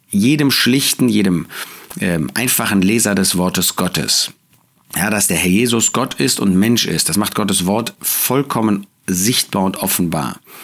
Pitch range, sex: 100-140 Hz, male